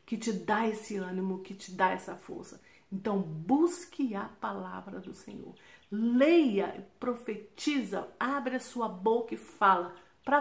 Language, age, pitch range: Portuguese, 50-69, 190-250 Hz